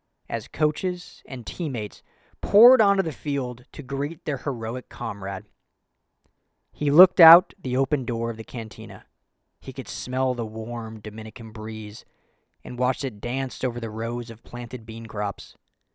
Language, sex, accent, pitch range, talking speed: English, male, American, 110-145 Hz, 150 wpm